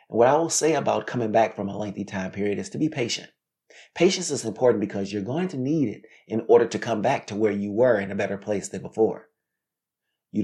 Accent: American